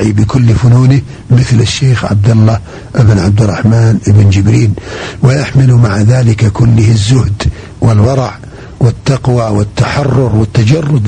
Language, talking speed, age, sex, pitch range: Arabic, 110 wpm, 50-69, male, 105-130 Hz